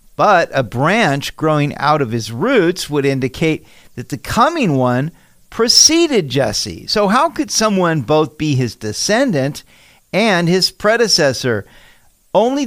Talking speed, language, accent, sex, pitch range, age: 135 wpm, English, American, male, 130-190 Hz, 50-69